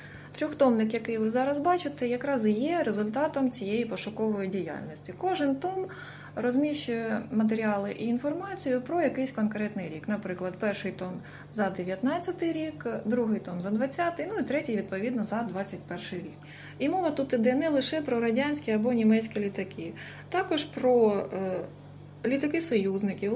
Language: Ukrainian